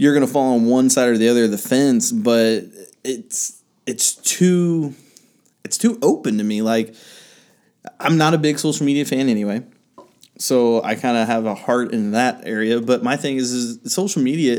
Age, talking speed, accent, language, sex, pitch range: 20-39, 195 wpm, American, English, male, 115-145 Hz